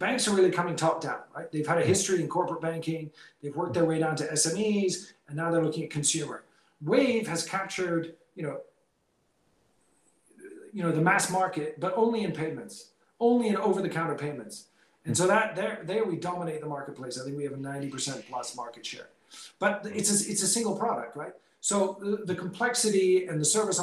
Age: 40-59